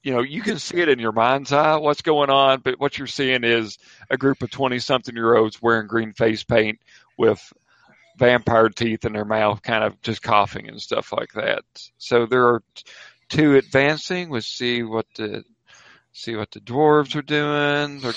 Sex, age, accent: male, 50-69, American